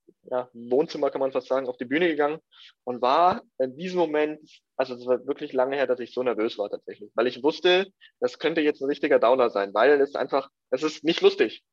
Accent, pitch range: German, 130-170 Hz